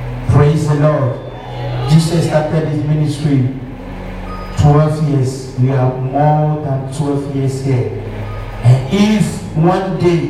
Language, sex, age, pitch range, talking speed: English, male, 50-69, 130-180 Hz, 115 wpm